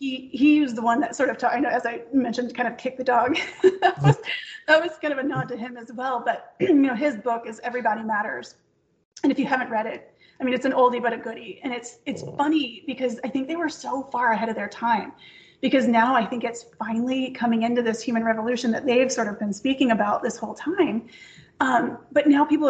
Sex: female